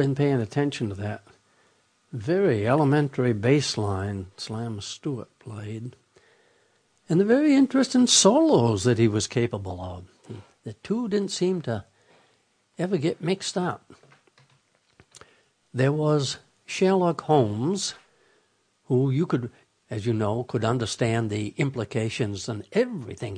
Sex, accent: male, American